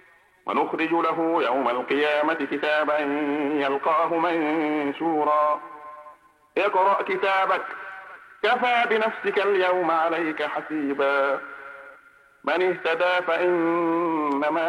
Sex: male